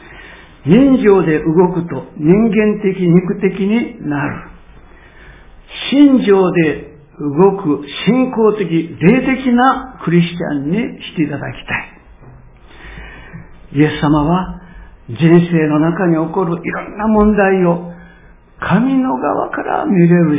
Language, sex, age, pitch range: Japanese, male, 60-79, 145-190 Hz